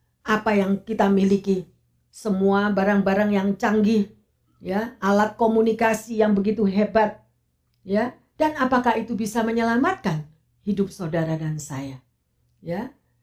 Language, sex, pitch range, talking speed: Indonesian, female, 140-230 Hz, 115 wpm